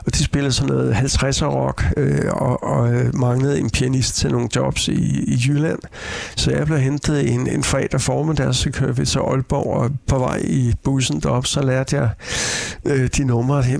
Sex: male